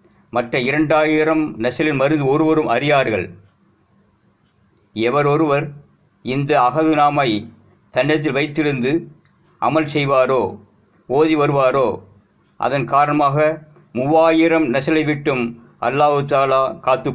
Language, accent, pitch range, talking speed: English, Indian, 125-155 Hz, 105 wpm